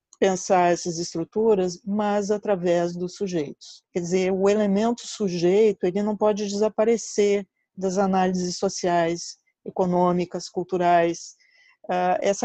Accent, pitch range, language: Brazilian, 180-210 Hz, Portuguese